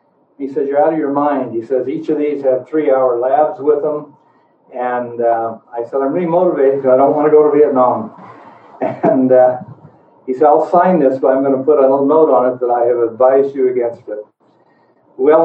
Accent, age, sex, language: American, 60-79, male, English